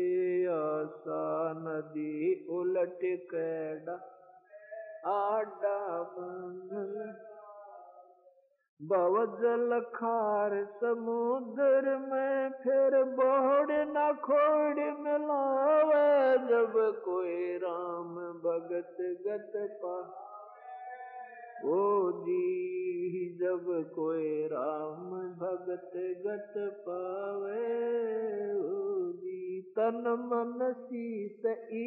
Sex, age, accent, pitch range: male, 50-69, native, 185-270 Hz